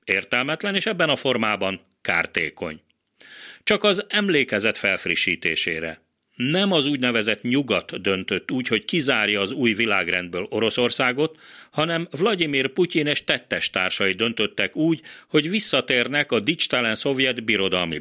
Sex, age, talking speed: male, 40-59, 120 wpm